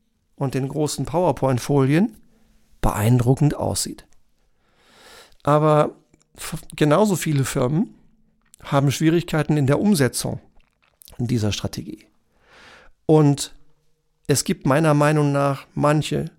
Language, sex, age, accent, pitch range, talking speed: German, male, 50-69, German, 135-165 Hz, 90 wpm